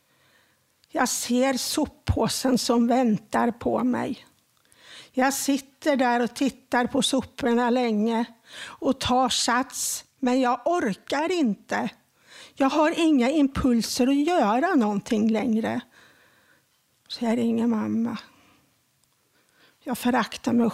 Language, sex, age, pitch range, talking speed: Swedish, female, 50-69, 230-280 Hz, 105 wpm